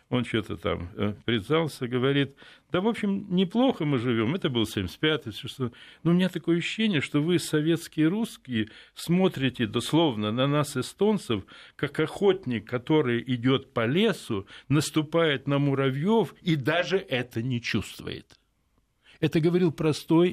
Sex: male